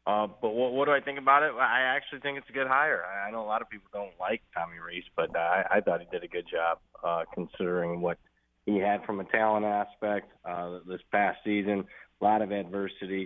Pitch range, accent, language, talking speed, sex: 90-115 Hz, American, English, 245 wpm, male